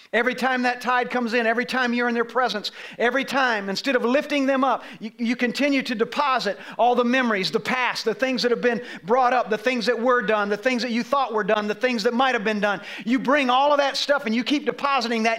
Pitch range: 245-320 Hz